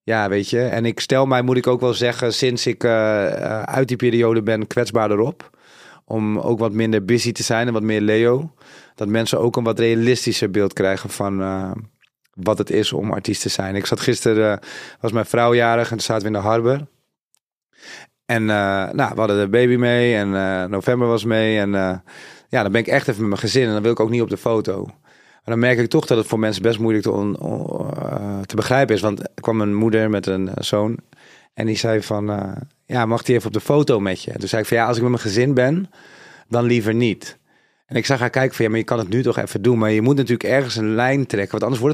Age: 30-49